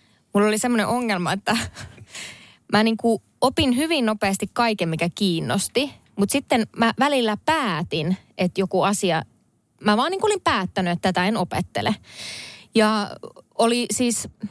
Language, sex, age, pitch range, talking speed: Finnish, female, 20-39, 185-240 Hz, 135 wpm